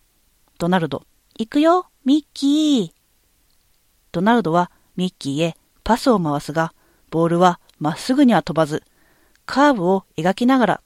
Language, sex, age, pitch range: Japanese, female, 40-59, 160-240 Hz